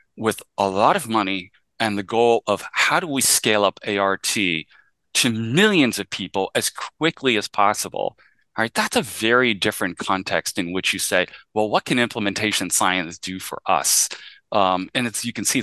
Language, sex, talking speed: English, male, 185 wpm